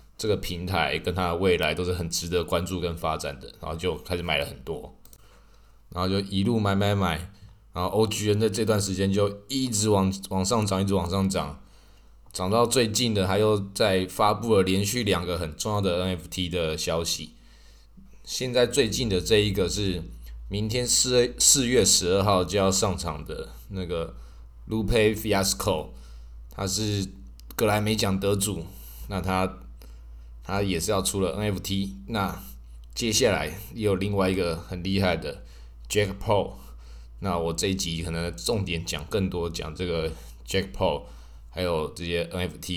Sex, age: male, 20-39